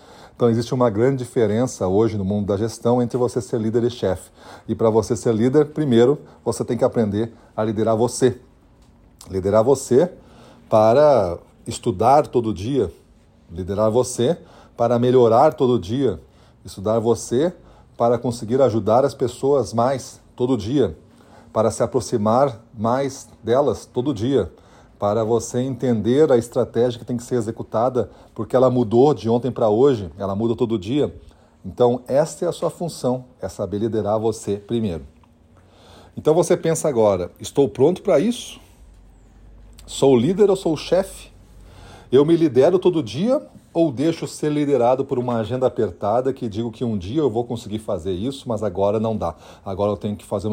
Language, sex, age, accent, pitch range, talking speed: Portuguese, male, 40-59, Brazilian, 105-130 Hz, 160 wpm